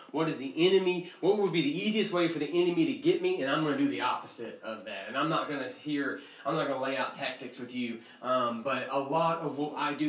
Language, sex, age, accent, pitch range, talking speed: English, male, 30-49, American, 130-155 Hz, 285 wpm